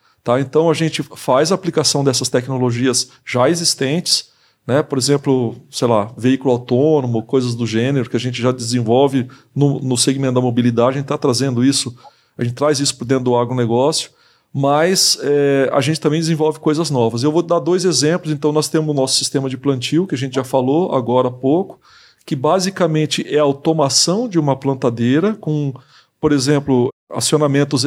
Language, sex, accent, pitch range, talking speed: Portuguese, male, Brazilian, 130-155 Hz, 175 wpm